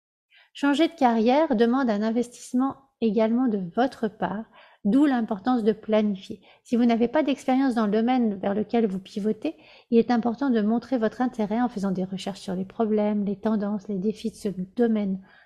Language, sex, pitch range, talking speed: French, female, 210-250 Hz, 185 wpm